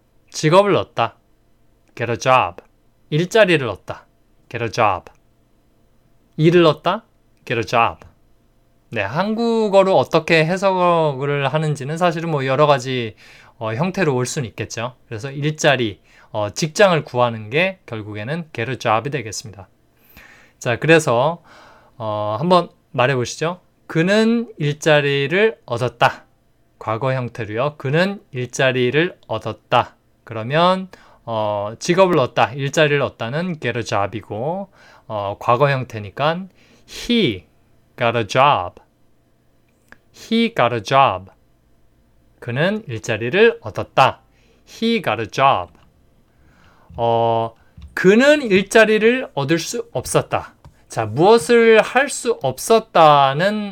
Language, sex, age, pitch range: Korean, male, 20-39, 115-170 Hz